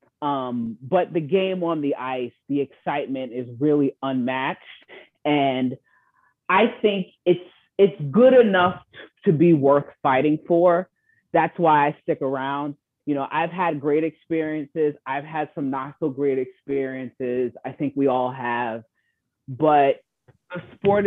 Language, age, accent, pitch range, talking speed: English, 30-49, American, 130-165 Hz, 140 wpm